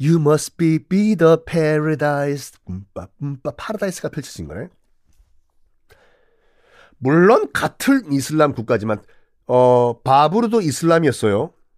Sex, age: male, 40-59